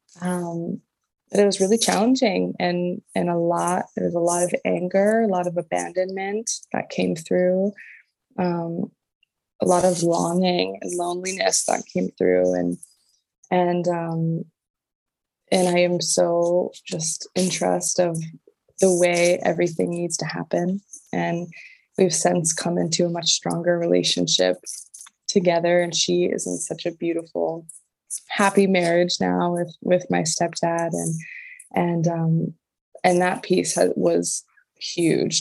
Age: 20-39